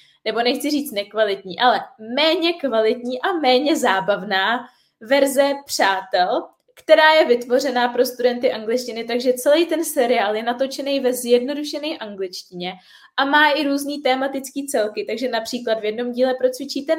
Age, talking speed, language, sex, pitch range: 20-39, 140 wpm, Czech, female, 235-285 Hz